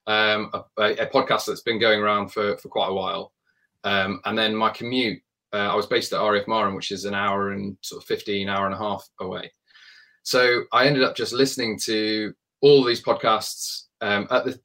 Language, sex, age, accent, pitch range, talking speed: English, male, 20-39, British, 100-115 Hz, 210 wpm